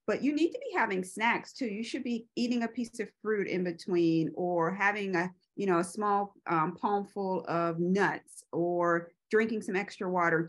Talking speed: 200 wpm